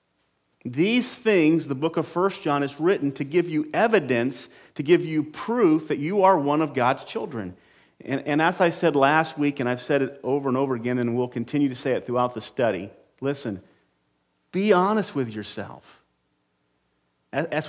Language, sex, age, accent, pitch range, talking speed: English, male, 40-59, American, 120-175 Hz, 185 wpm